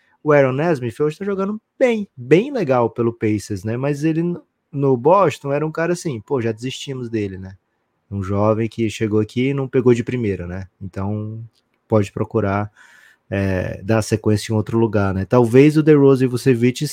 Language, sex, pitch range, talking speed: Portuguese, male, 105-135 Hz, 185 wpm